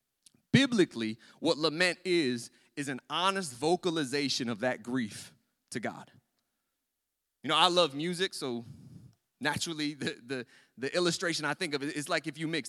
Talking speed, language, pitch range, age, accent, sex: 150 wpm, English, 145-205 Hz, 30-49, American, male